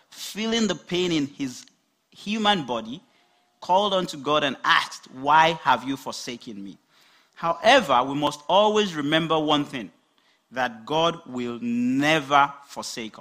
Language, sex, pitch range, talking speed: English, male, 125-175 Hz, 130 wpm